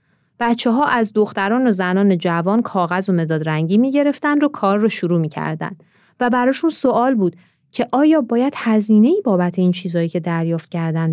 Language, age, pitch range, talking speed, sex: Persian, 30-49, 175-260 Hz, 180 wpm, female